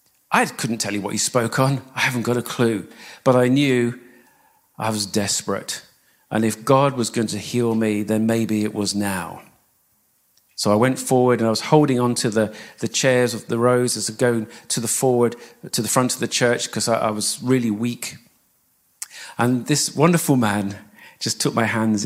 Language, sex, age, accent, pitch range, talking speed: English, male, 40-59, British, 110-130 Hz, 195 wpm